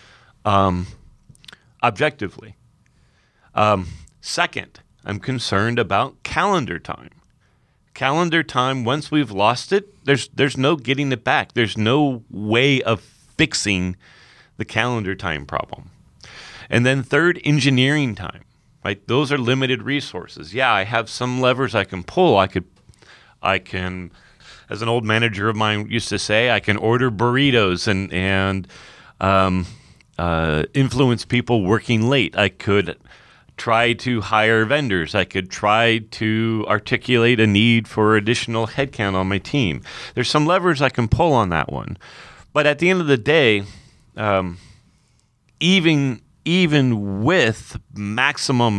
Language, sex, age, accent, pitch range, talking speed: English, male, 40-59, American, 100-135 Hz, 140 wpm